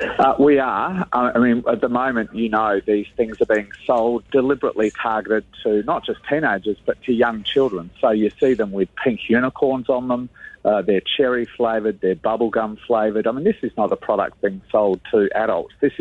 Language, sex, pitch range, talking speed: English, male, 105-125 Hz, 200 wpm